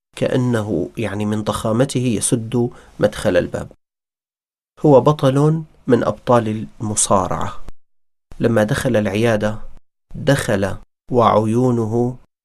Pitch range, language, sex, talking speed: 105-130 Hz, Arabic, male, 80 wpm